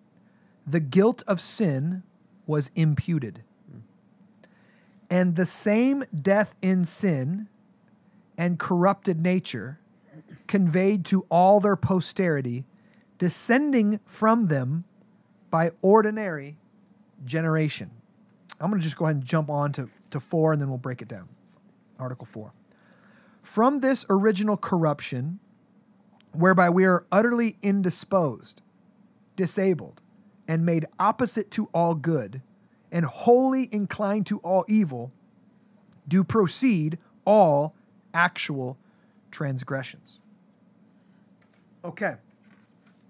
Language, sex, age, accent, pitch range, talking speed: English, male, 40-59, American, 165-210 Hz, 105 wpm